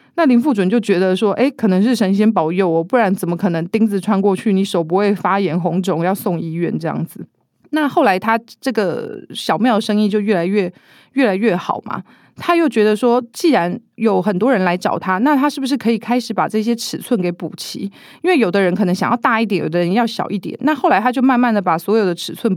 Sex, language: female, Chinese